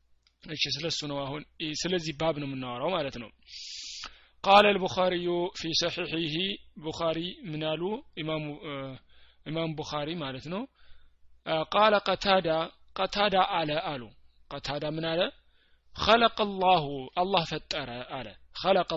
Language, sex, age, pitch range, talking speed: Amharic, male, 30-49, 150-200 Hz, 90 wpm